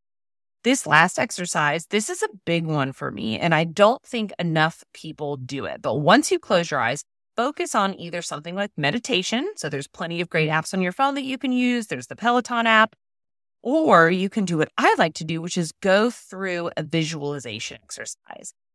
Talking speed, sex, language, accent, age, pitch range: 200 wpm, female, English, American, 30-49, 150-235 Hz